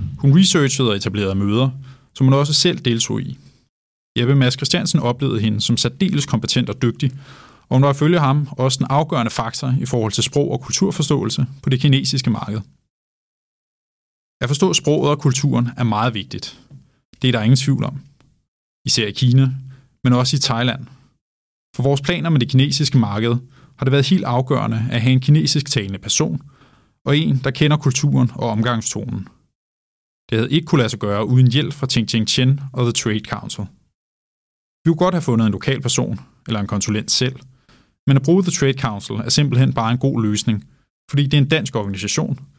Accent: native